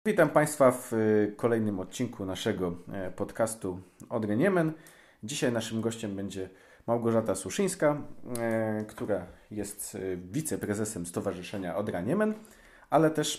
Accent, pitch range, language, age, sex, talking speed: native, 100-125 Hz, Polish, 40-59, male, 105 wpm